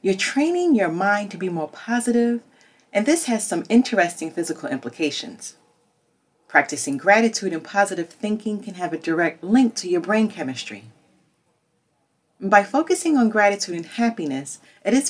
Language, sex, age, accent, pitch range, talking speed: English, female, 40-59, American, 160-230 Hz, 145 wpm